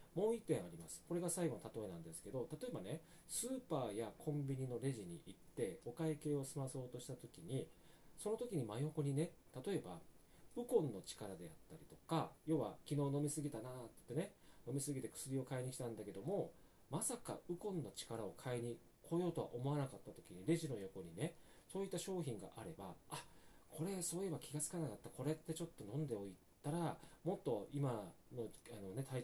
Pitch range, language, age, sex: 120-165 Hz, Japanese, 40-59, male